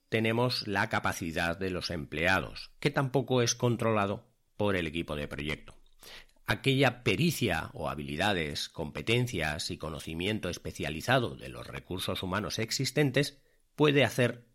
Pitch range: 90-130 Hz